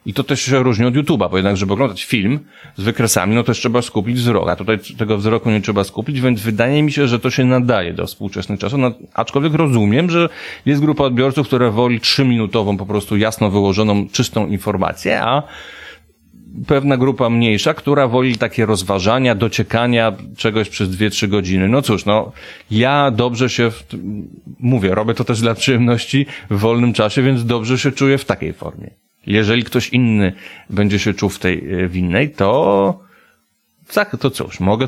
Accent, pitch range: native, 100-130 Hz